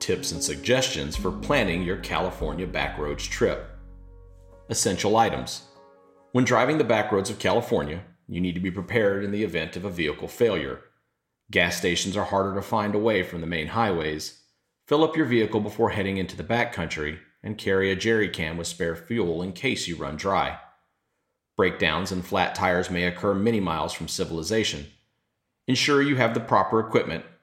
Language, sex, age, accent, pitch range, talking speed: English, male, 40-59, American, 85-110 Hz, 170 wpm